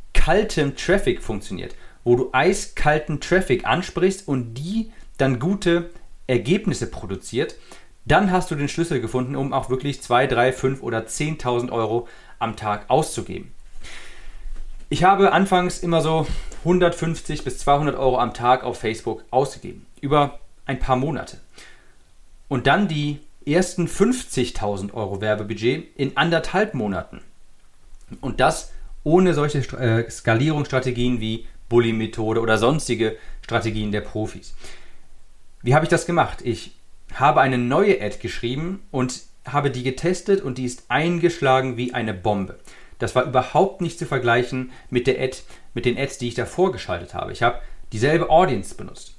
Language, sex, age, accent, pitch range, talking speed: German, male, 40-59, German, 120-160 Hz, 145 wpm